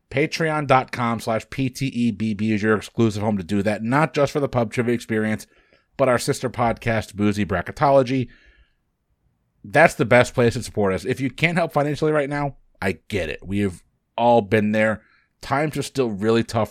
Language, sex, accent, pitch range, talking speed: English, male, American, 110-140 Hz, 175 wpm